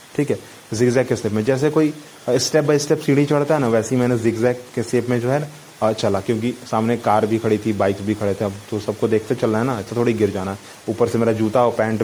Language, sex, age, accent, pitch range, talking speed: Hindi, male, 30-49, native, 110-135 Hz, 215 wpm